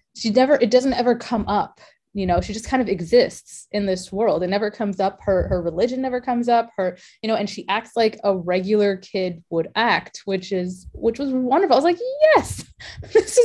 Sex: female